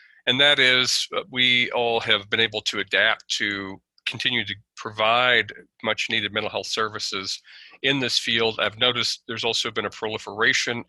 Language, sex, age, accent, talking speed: English, male, 40-59, American, 160 wpm